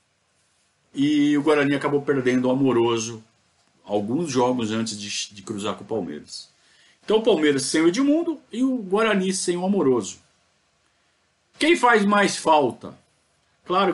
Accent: Brazilian